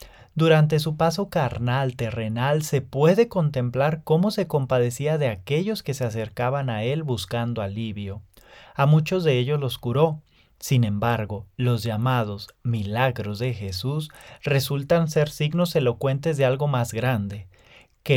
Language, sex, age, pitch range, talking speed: English, male, 30-49, 115-155 Hz, 140 wpm